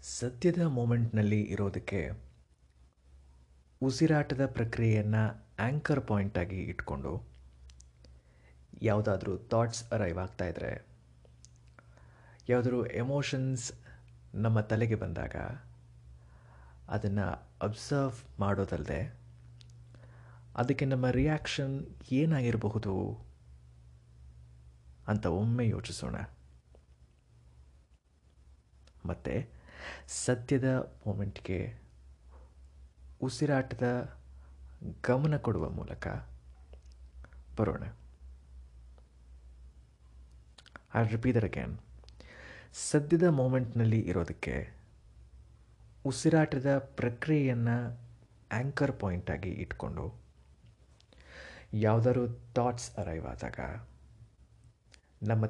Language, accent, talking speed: Kannada, native, 55 wpm